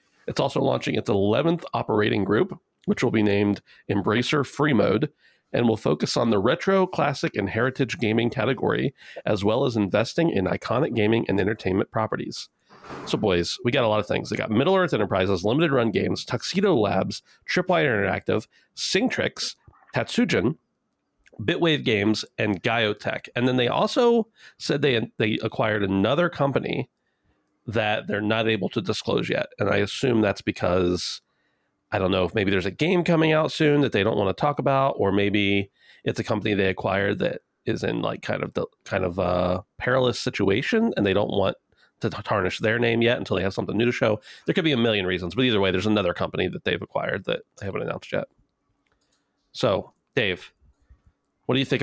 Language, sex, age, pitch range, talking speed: English, male, 40-59, 100-135 Hz, 190 wpm